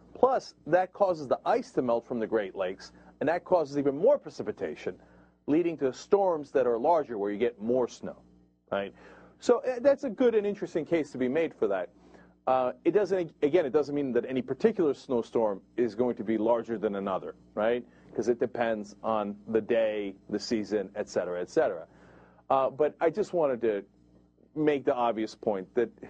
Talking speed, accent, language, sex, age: 190 wpm, American, English, male, 40-59